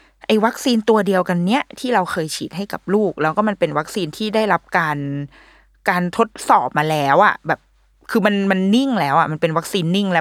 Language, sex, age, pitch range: Thai, female, 20-39, 155-220 Hz